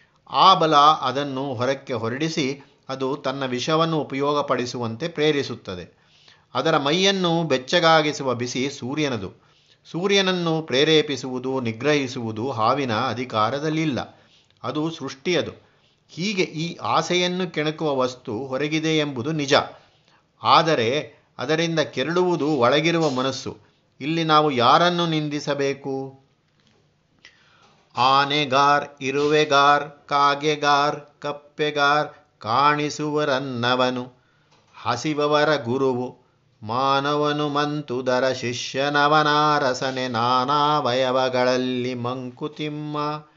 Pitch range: 125-150 Hz